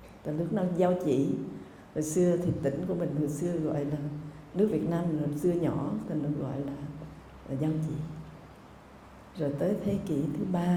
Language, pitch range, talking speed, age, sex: Vietnamese, 145-165 Hz, 185 wpm, 60-79, female